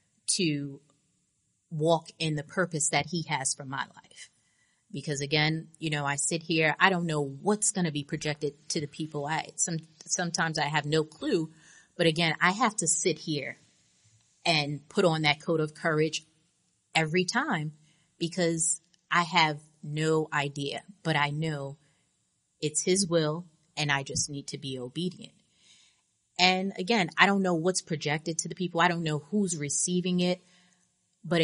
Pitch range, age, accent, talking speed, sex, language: 150-180 Hz, 30-49, American, 165 wpm, female, Russian